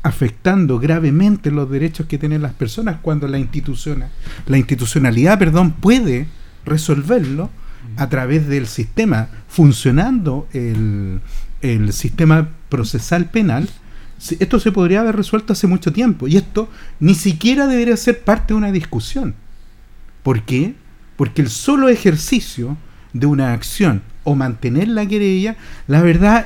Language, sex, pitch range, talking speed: Spanish, male, 130-190 Hz, 135 wpm